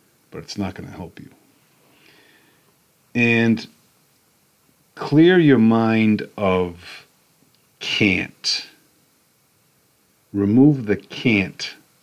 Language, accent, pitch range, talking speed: English, American, 90-115 Hz, 80 wpm